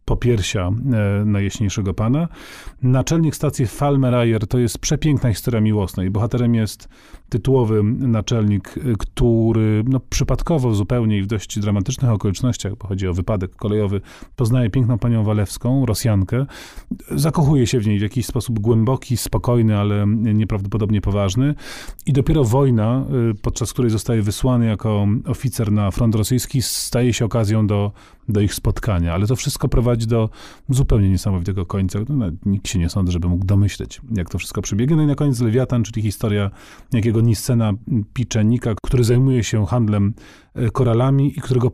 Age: 30-49